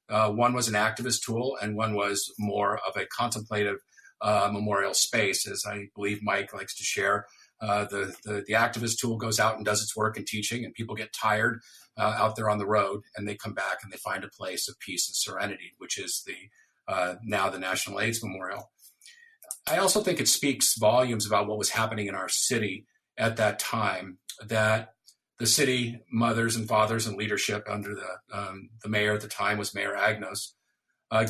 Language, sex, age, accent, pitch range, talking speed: English, male, 50-69, American, 100-125 Hz, 200 wpm